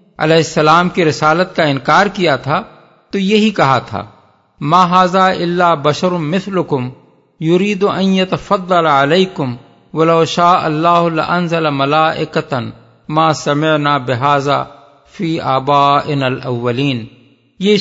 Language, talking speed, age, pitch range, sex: Urdu, 80 wpm, 50-69, 140-185 Hz, male